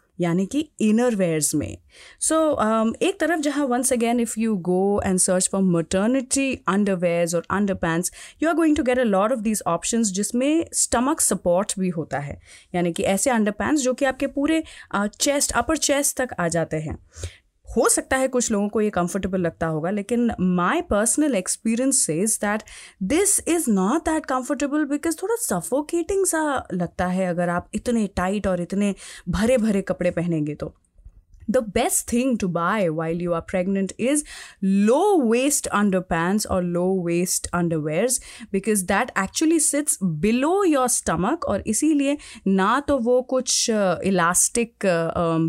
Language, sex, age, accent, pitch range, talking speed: Hindi, female, 30-49, native, 180-255 Hz, 165 wpm